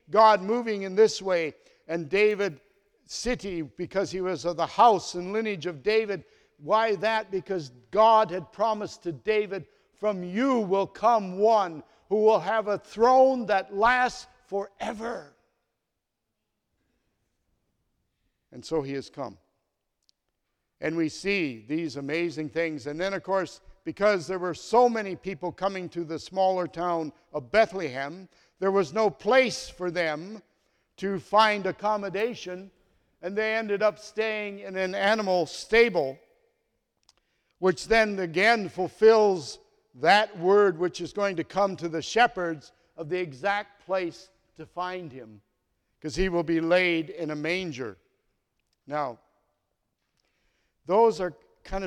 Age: 60-79